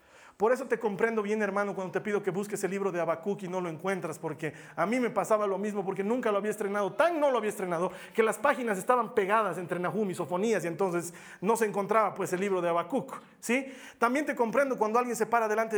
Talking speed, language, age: 245 wpm, Spanish, 40-59